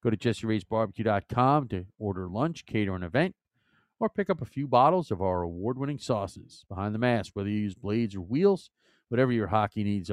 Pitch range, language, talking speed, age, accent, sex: 100-135 Hz, English, 190 wpm, 40-59, American, male